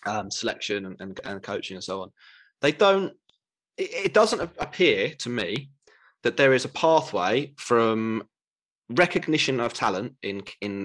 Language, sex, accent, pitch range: English, male, British, 105-140 Hz